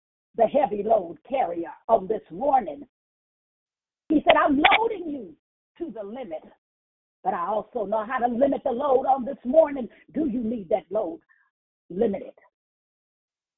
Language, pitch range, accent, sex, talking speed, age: English, 210-310 Hz, American, female, 145 wpm, 40-59